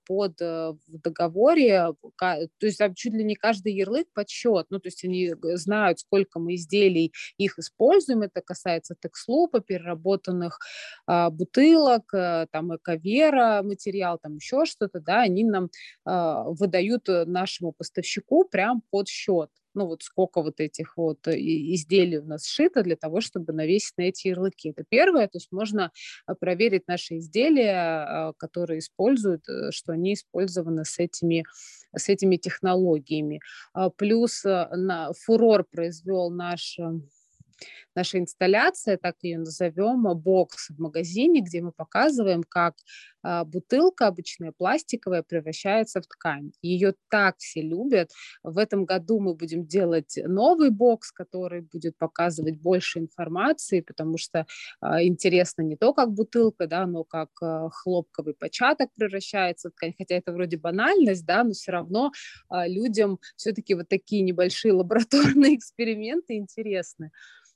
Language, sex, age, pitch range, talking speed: Russian, female, 20-39, 170-210 Hz, 130 wpm